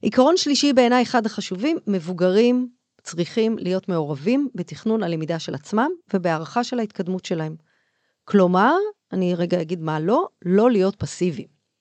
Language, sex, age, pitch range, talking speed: Hebrew, female, 40-59, 175-245 Hz, 130 wpm